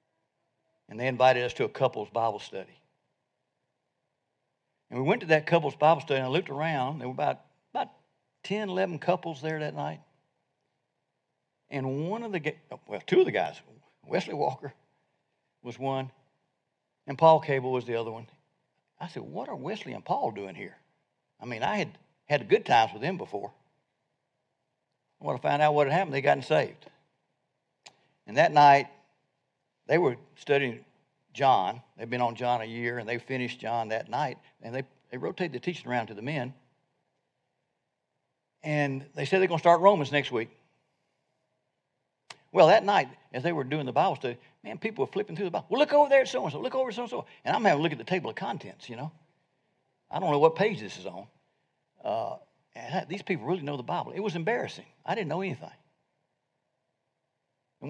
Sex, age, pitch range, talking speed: male, 60-79, 130-180 Hz, 190 wpm